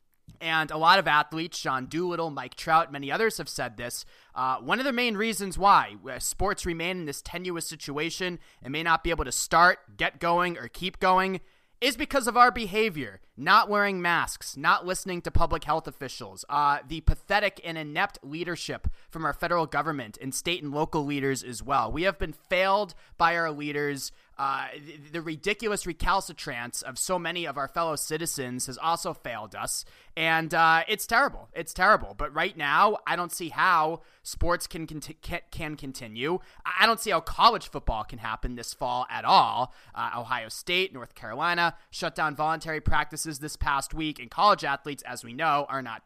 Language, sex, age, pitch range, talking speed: English, male, 20-39, 145-190 Hz, 185 wpm